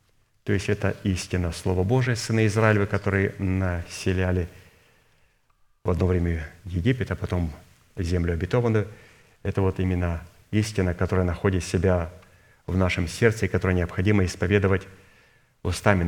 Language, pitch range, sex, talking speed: Russian, 95-110 Hz, male, 125 wpm